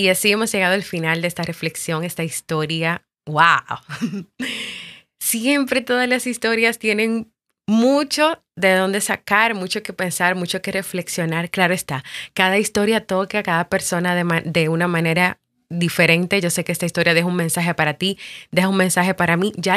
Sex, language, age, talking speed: female, Spanish, 20-39, 175 wpm